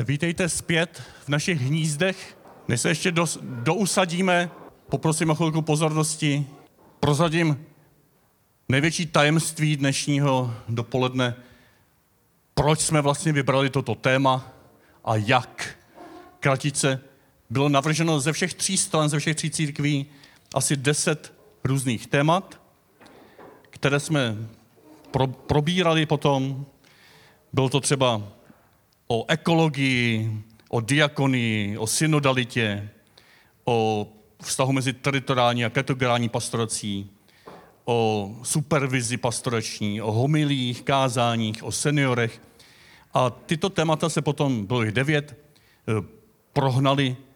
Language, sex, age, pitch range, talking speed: Czech, male, 40-59, 120-155 Hz, 100 wpm